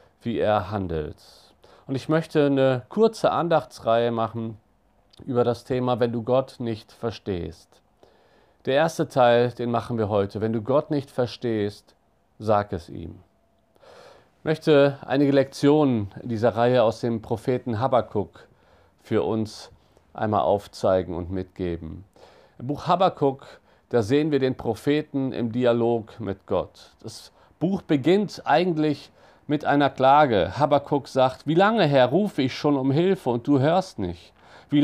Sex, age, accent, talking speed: male, 50-69, German, 145 wpm